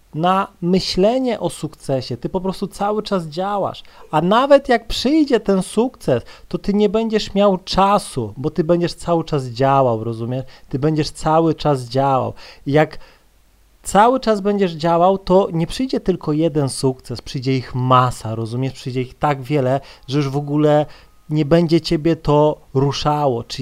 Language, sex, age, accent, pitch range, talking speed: Polish, male, 30-49, native, 125-180 Hz, 160 wpm